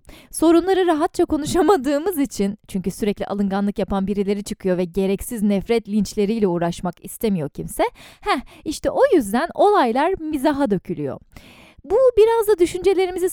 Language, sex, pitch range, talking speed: Turkish, female, 210-330 Hz, 125 wpm